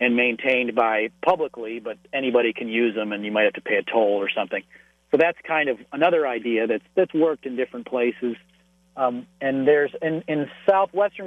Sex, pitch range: male, 115-160 Hz